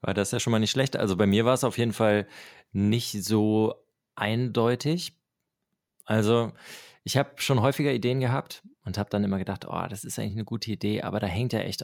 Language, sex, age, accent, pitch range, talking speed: German, male, 20-39, German, 105-130 Hz, 215 wpm